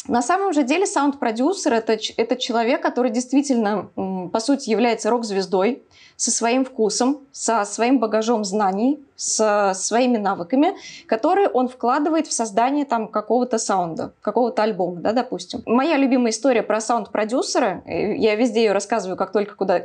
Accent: native